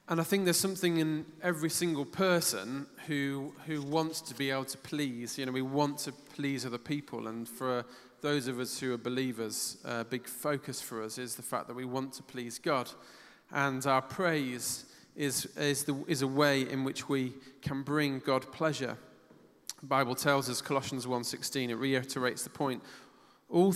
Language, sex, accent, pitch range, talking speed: English, male, British, 130-160 Hz, 190 wpm